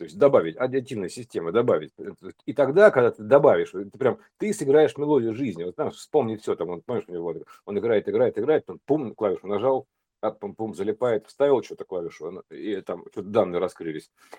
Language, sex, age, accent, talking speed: Russian, male, 50-69, native, 155 wpm